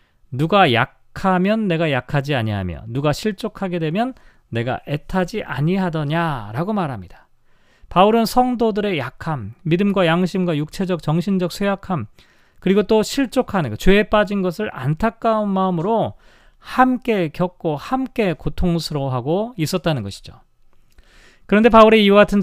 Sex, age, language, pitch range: male, 40-59, Korean, 135-195 Hz